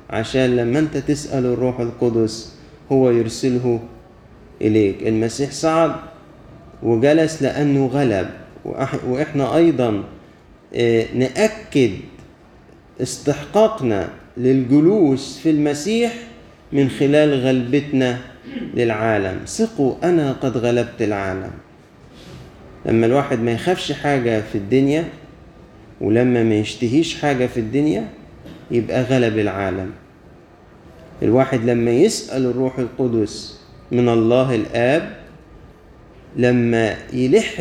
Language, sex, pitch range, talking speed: Arabic, male, 115-145 Hz, 90 wpm